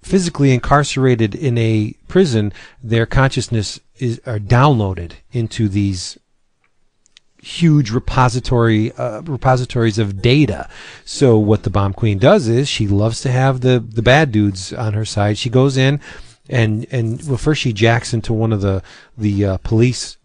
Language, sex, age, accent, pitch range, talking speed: English, male, 40-59, American, 105-130 Hz, 155 wpm